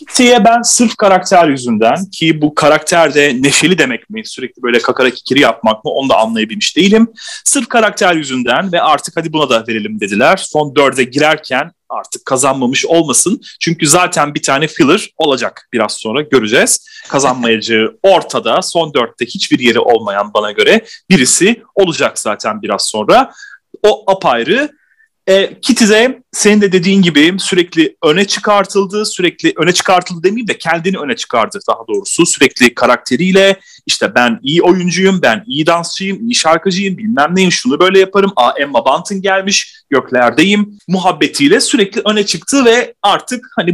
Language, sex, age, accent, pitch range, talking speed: Turkish, male, 30-49, native, 150-215 Hz, 150 wpm